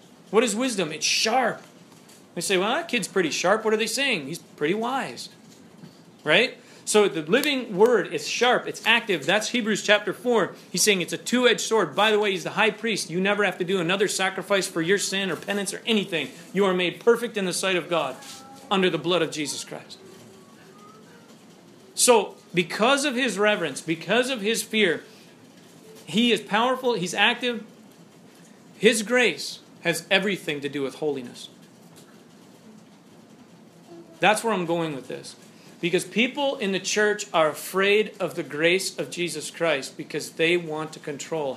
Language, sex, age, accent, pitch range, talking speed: English, male, 40-59, American, 170-220 Hz, 175 wpm